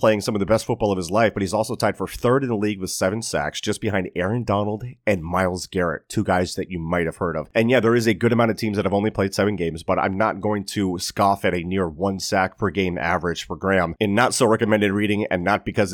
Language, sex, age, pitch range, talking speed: English, male, 30-49, 95-125 Hz, 280 wpm